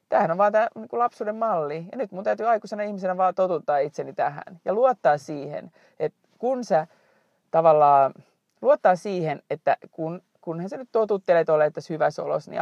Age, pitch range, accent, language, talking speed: 30-49, 165-220 Hz, native, Finnish, 165 wpm